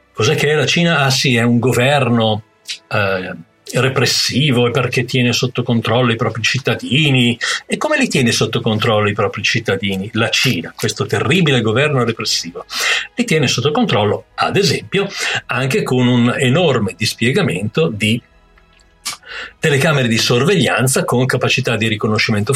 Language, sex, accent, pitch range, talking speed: Italian, male, native, 115-165 Hz, 140 wpm